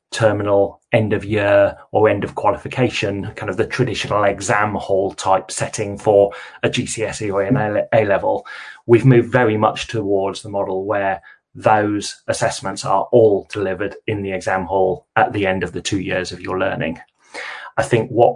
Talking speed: 170 wpm